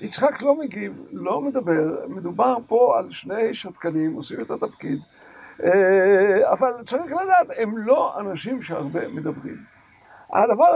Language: Hebrew